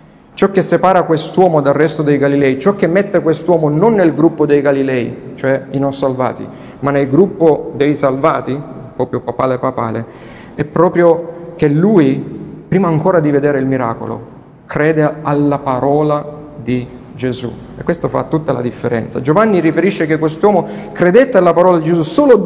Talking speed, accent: 160 wpm, native